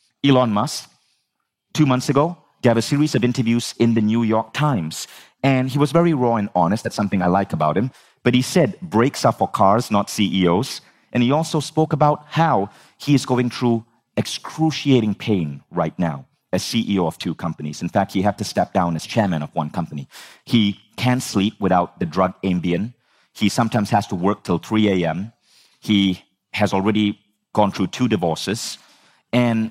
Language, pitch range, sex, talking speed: English, 95-125 Hz, male, 185 wpm